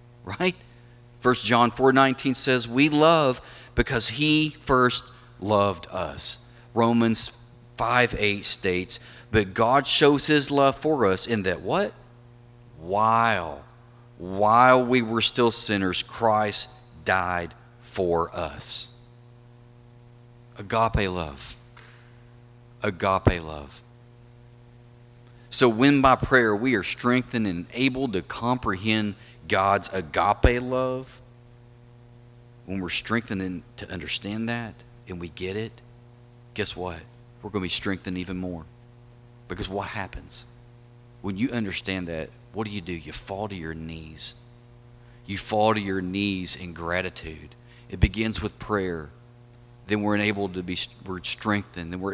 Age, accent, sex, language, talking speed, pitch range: 40-59, American, male, English, 125 wpm, 100-120 Hz